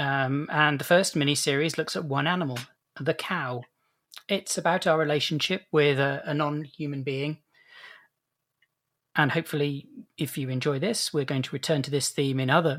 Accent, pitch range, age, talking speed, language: British, 135-165 Hz, 40-59, 175 wpm, English